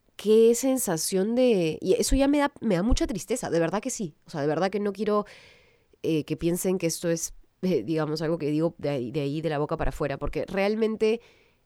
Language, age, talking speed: Spanish, 20-39, 230 wpm